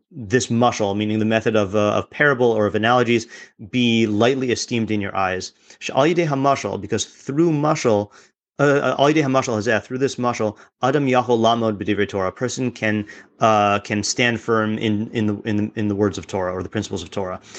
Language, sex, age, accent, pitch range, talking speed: English, male, 30-49, American, 110-130 Hz, 180 wpm